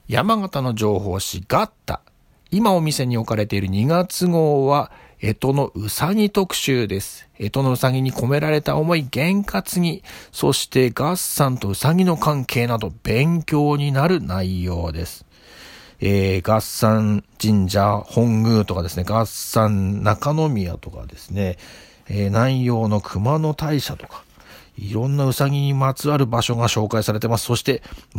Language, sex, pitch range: Japanese, male, 100-150 Hz